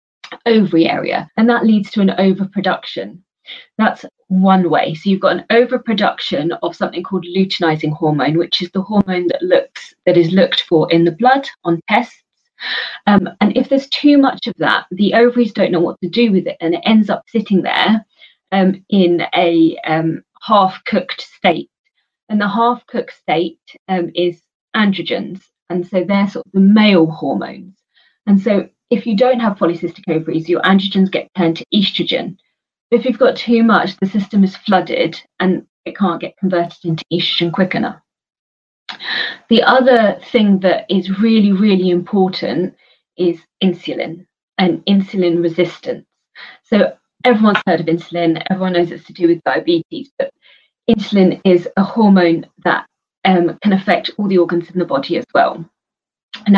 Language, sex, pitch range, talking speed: Punjabi, female, 175-215 Hz, 165 wpm